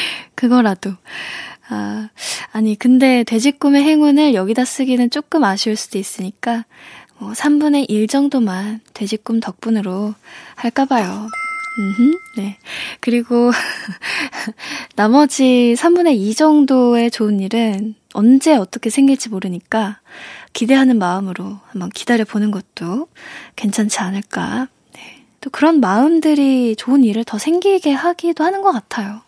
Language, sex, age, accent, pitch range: Korean, female, 10-29, native, 215-280 Hz